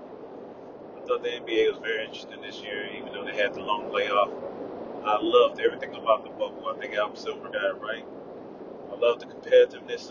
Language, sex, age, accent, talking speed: English, male, 30-49, American, 195 wpm